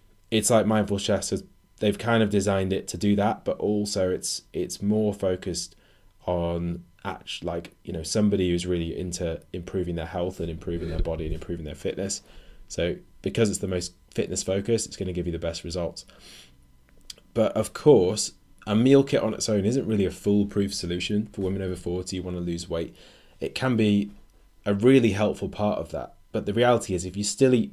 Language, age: English, 20-39